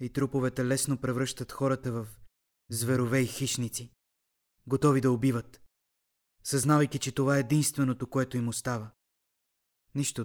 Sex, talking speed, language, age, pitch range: male, 125 wpm, Bulgarian, 20-39, 110-135 Hz